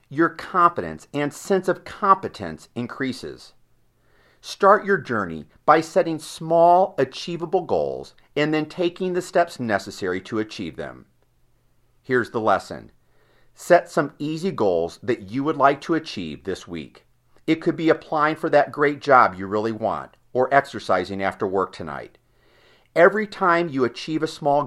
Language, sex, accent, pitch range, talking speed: English, male, American, 115-170 Hz, 150 wpm